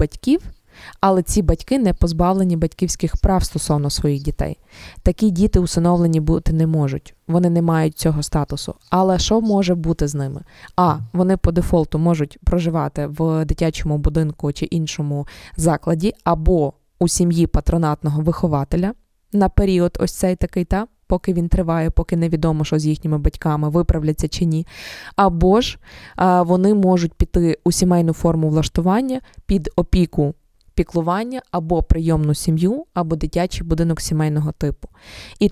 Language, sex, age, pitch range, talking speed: Ukrainian, female, 20-39, 160-190 Hz, 140 wpm